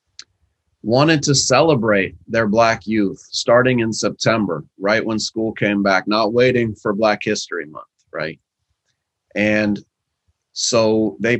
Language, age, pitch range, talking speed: English, 30-49, 105-125 Hz, 125 wpm